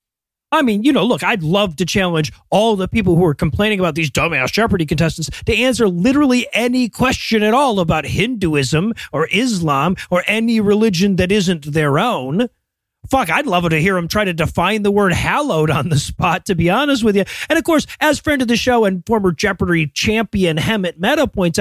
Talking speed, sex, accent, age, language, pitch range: 205 wpm, male, American, 30-49, English, 170-230 Hz